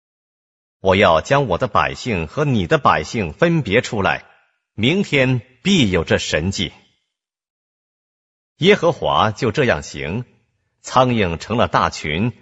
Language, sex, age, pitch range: Korean, male, 50-69, 100-125 Hz